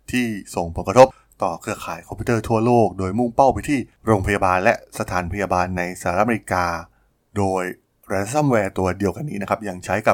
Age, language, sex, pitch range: 20-39, Thai, male, 95-120 Hz